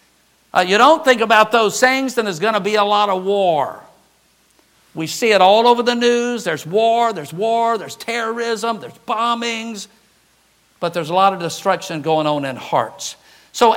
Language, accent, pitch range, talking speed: English, American, 185-245 Hz, 185 wpm